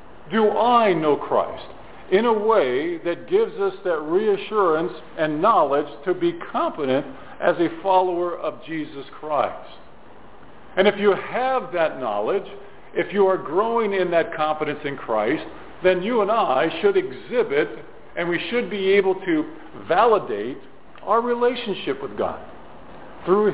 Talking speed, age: 145 wpm, 50-69